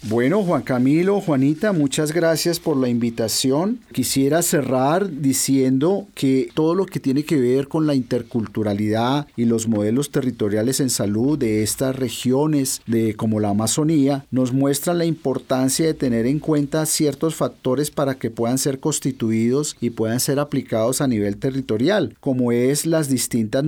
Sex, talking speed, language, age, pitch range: male, 155 wpm, Spanish, 40-59, 120-155 Hz